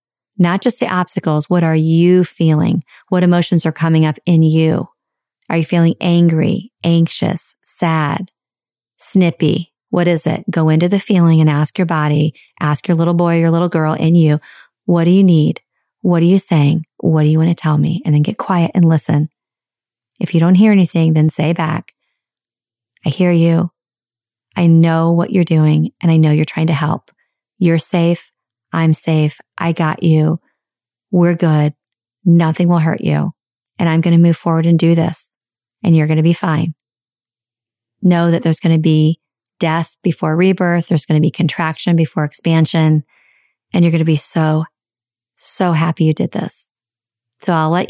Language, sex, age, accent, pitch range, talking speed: English, female, 30-49, American, 155-175 Hz, 180 wpm